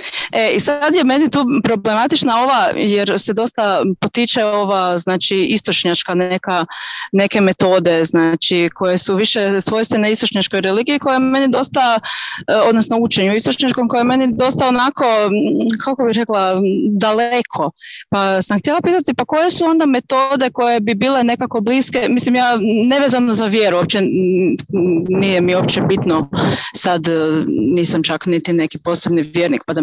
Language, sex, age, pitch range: Croatian, female, 20-39, 185-245 Hz